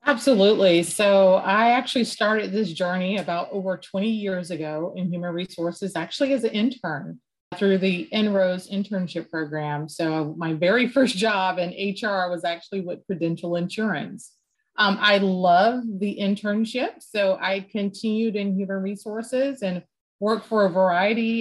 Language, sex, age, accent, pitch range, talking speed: English, female, 30-49, American, 180-220 Hz, 145 wpm